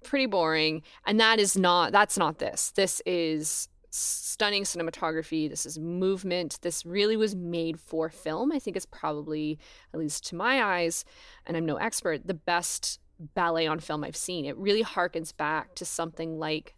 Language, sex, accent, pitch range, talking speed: English, female, American, 155-195 Hz, 175 wpm